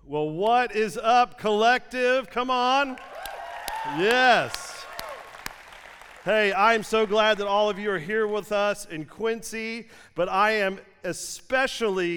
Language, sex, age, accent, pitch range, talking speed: English, male, 40-59, American, 155-215 Hz, 135 wpm